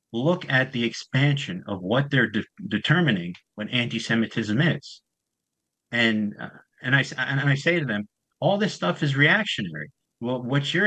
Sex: male